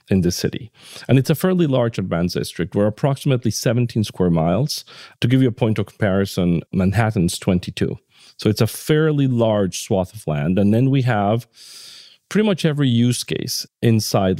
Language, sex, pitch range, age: English, male, 100-130 Hz, 40-59